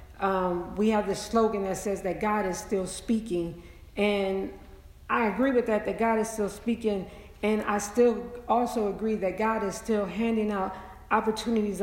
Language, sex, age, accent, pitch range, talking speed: English, female, 50-69, American, 190-220 Hz, 175 wpm